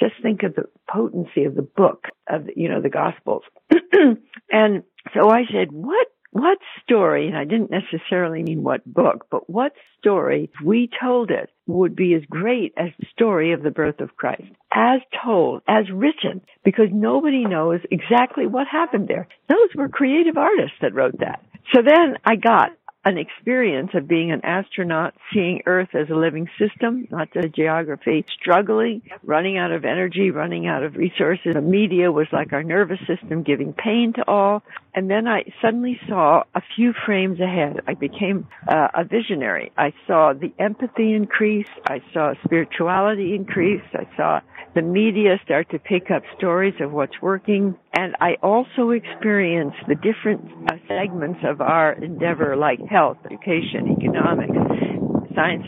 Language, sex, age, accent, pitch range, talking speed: English, female, 60-79, American, 165-220 Hz, 165 wpm